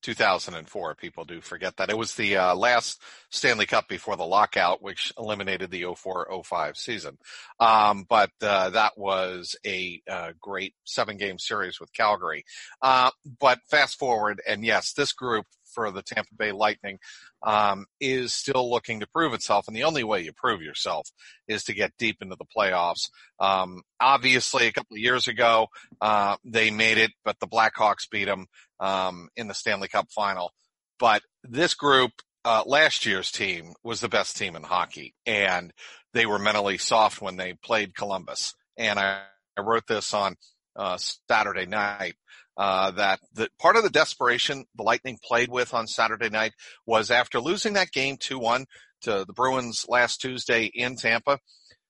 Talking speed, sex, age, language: 170 wpm, male, 40-59, English